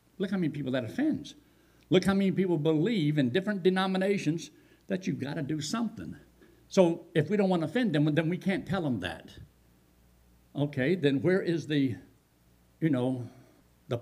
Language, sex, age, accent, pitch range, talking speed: English, male, 60-79, American, 125-185 Hz, 180 wpm